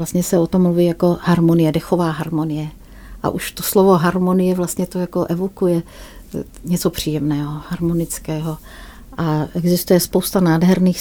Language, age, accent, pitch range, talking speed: Czech, 40-59, native, 170-185 Hz, 130 wpm